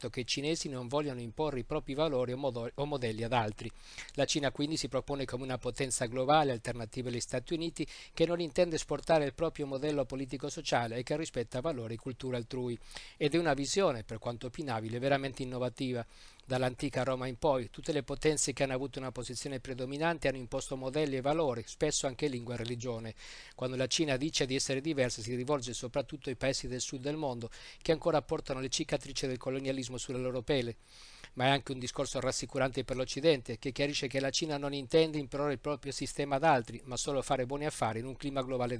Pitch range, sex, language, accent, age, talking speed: 125-145 Hz, male, Italian, native, 50-69, 200 wpm